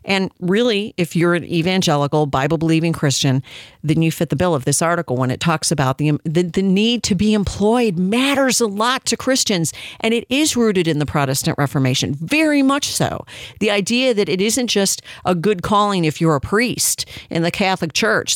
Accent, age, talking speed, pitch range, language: American, 50-69, 195 wpm, 160-220 Hz, English